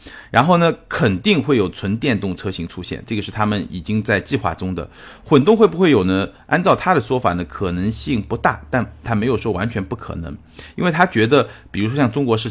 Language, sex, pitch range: Chinese, male, 95-115 Hz